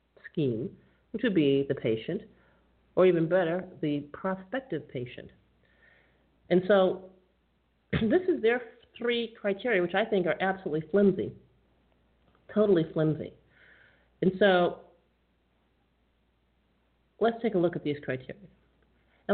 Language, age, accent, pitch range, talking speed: English, 50-69, American, 135-205 Hz, 115 wpm